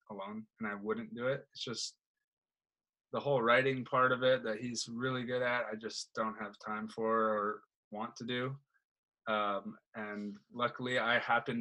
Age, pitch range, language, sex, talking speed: 20-39, 110-135 Hz, English, male, 175 wpm